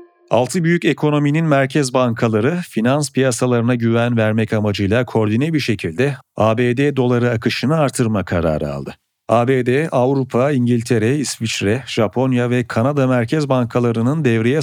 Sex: male